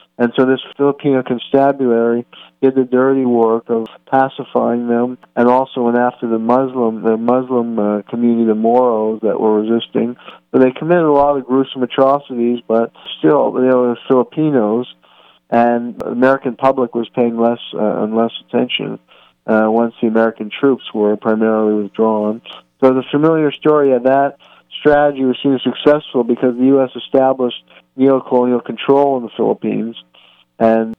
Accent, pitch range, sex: American, 115-130 Hz, male